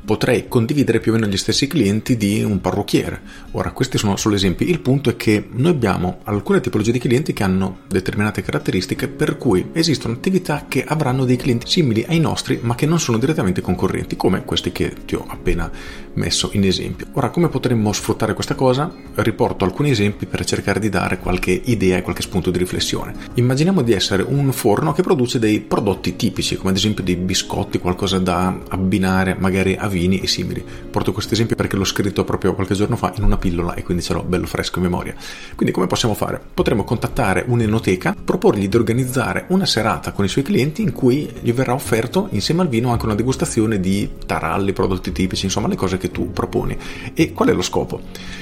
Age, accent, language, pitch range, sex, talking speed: 40-59, native, Italian, 95-125 Hz, male, 200 wpm